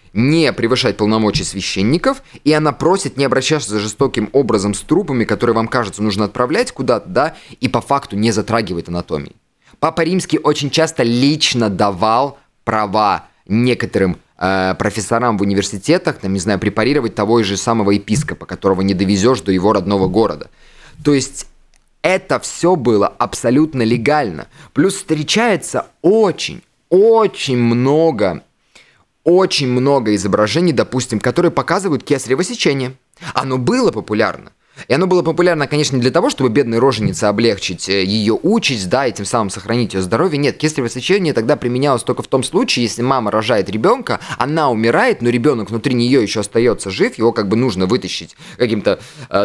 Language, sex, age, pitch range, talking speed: Russian, male, 20-39, 110-150 Hz, 155 wpm